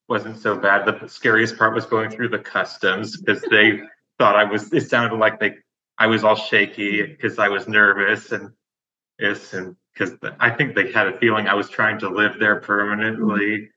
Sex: male